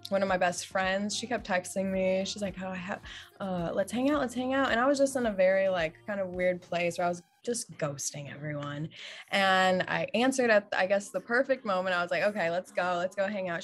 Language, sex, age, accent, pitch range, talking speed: English, female, 20-39, American, 175-205 Hz, 255 wpm